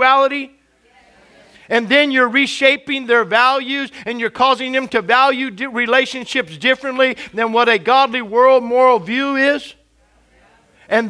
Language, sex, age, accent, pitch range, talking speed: English, male, 50-69, American, 220-260 Hz, 125 wpm